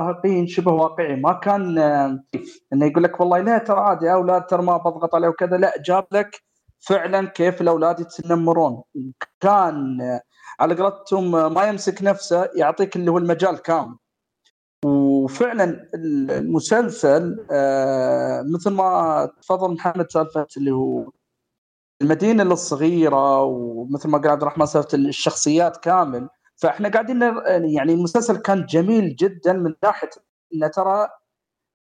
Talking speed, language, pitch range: 125 wpm, Arabic, 155-210 Hz